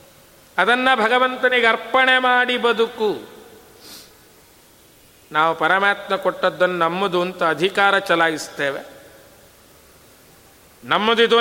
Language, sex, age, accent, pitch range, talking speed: Kannada, male, 50-69, native, 190-240 Hz, 70 wpm